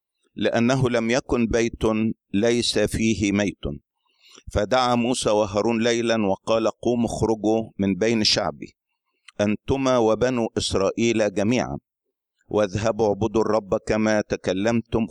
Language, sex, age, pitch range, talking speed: Arabic, male, 50-69, 100-120 Hz, 105 wpm